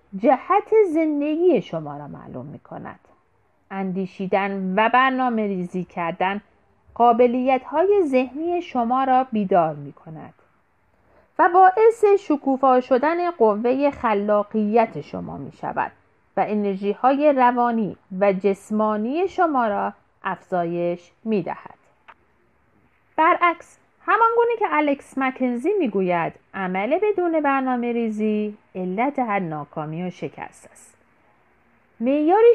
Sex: female